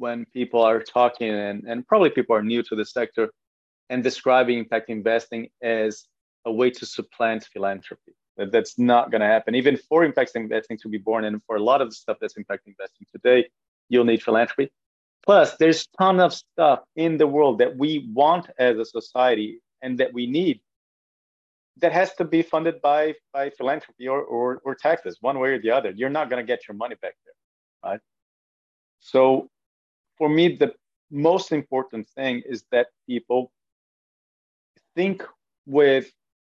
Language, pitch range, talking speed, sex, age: English, 110-145 Hz, 175 wpm, male, 30-49